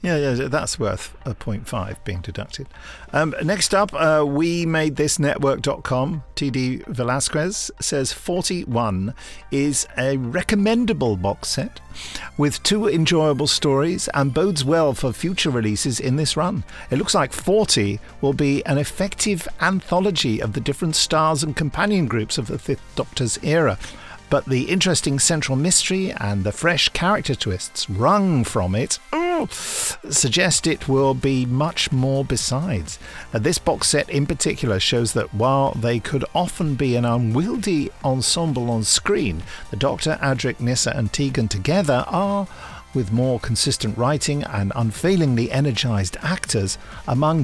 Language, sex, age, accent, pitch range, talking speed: English, male, 50-69, British, 120-165 Hz, 145 wpm